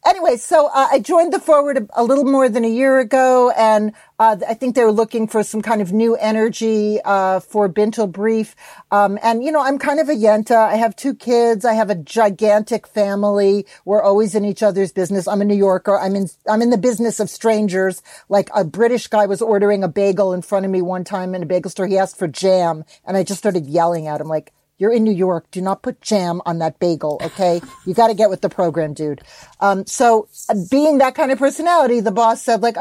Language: English